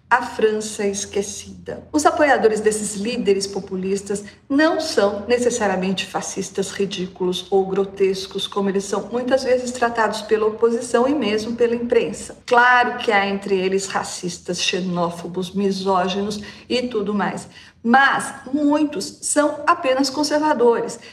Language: Portuguese